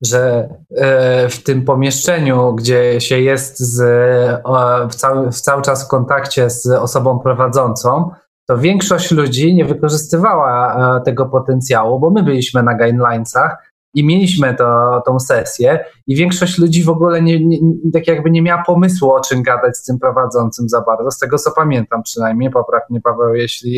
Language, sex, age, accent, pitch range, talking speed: Polish, male, 20-39, native, 125-160 Hz, 170 wpm